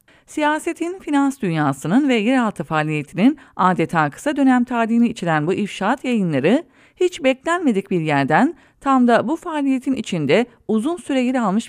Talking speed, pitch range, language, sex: 140 wpm, 180-270 Hz, English, female